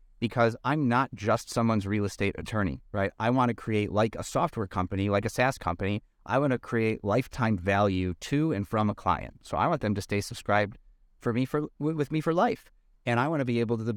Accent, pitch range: American, 105-135 Hz